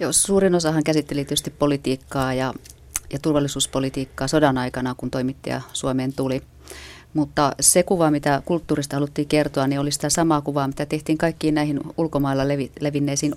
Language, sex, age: Finnish, female, 30-49